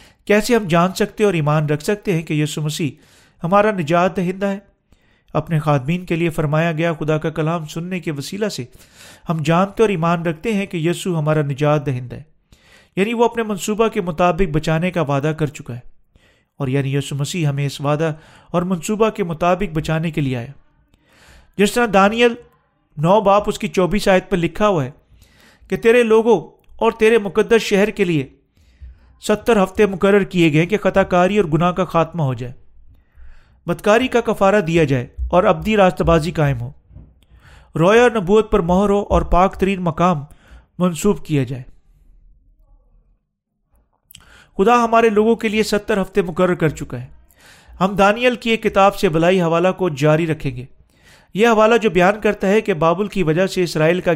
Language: Urdu